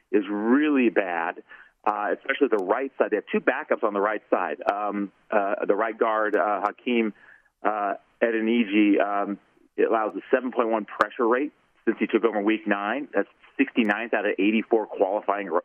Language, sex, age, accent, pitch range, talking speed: English, male, 40-59, American, 105-125 Hz, 165 wpm